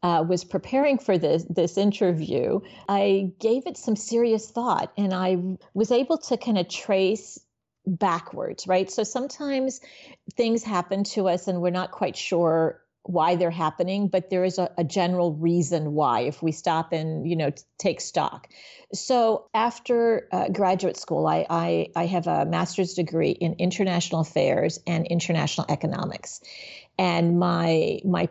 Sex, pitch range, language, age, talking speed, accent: female, 165-195 Hz, English, 40-59, 160 wpm, American